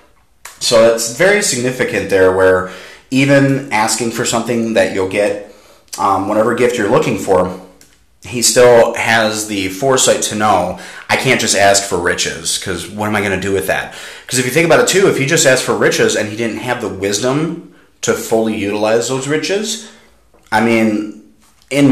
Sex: male